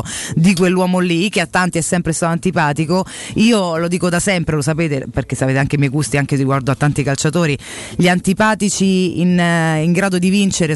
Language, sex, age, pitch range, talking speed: Italian, female, 30-49, 145-185 Hz, 195 wpm